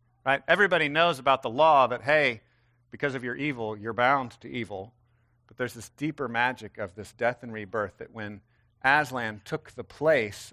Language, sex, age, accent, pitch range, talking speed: English, male, 50-69, American, 110-150 Hz, 180 wpm